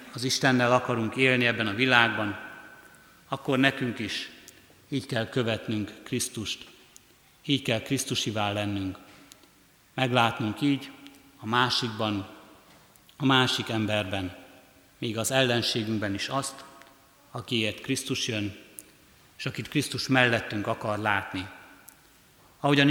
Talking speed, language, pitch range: 105 wpm, Hungarian, 110-130 Hz